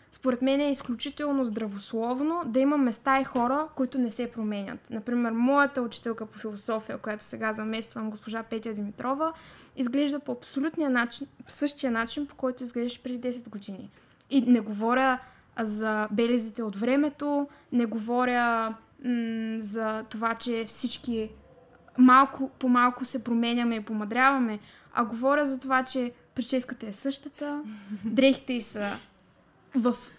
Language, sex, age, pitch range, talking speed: Bulgarian, female, 10-29, 230-280 Hz, 135 wpm